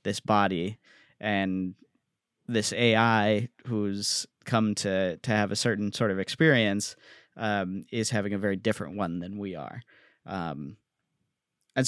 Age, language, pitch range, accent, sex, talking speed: 20-39, English, 100-125 Hz, American, male, 135 wpm